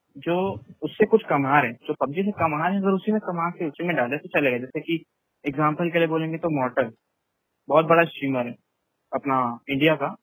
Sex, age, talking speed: male, 20-39, 210 wpm